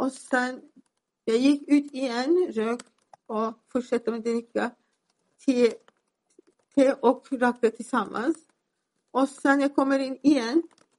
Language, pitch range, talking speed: Swedish, 230-275 Hz, 120 wpm